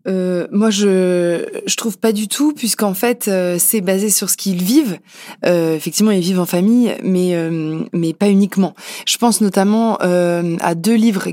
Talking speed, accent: 185 wpm, French